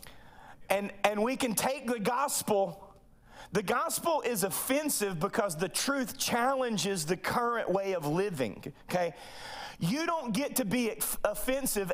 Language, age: English, 30-49